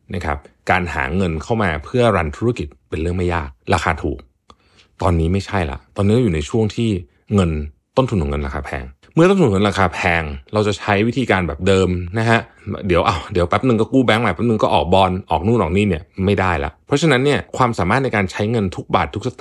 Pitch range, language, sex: 85-115 Hz, Thai, male